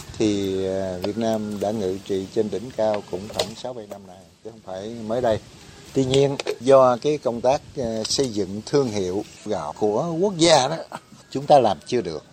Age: 60-79